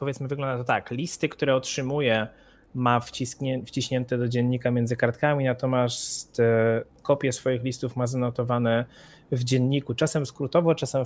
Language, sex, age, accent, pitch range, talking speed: Polish, male, 20-39, native, 120-140 Hz, 140 wpm